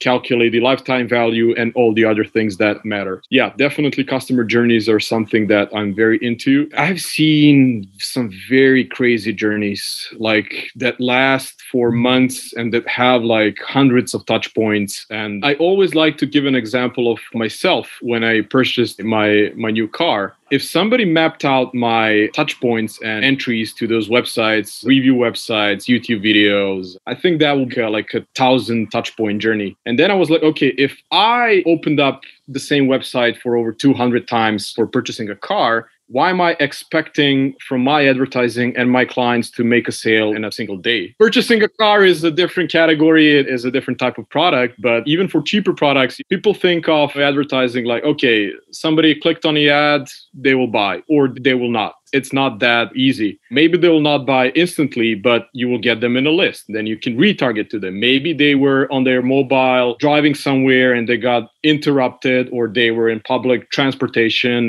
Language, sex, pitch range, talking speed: English, male, 115-140 Hz, 185 wpm